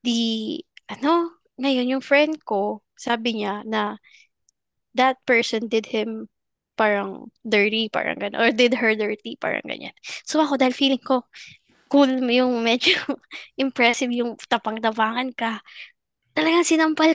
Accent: native